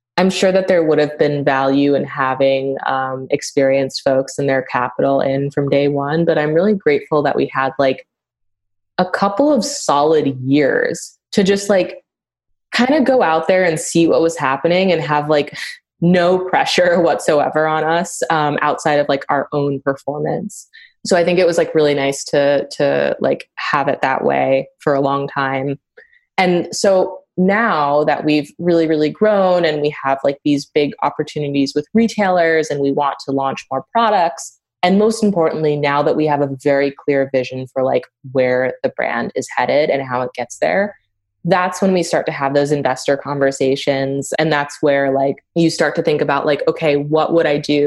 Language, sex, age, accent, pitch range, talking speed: English, female, 20-39, American, 140-175 Hz, 190 wpm